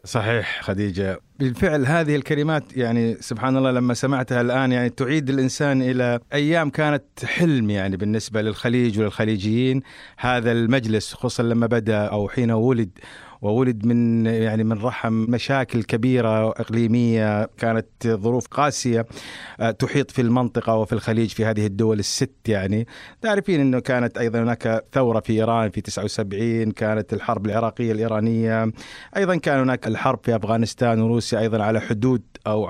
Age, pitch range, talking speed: 50-69, 115-135 Hz, 140 wpm